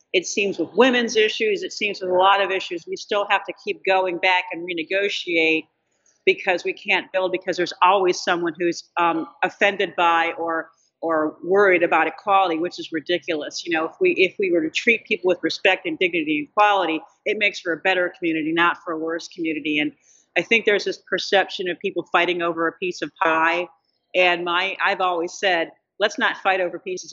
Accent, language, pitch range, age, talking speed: American, English, 165-195 Hz, 40-59, 205 wpm